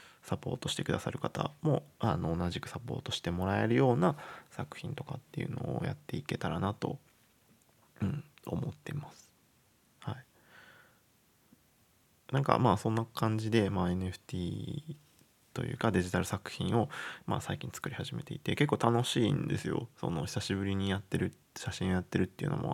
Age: 20-39